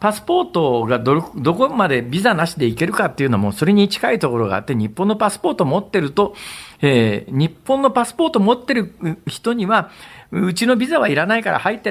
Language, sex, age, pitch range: Japanese, male, 50-69, 145-220 Hz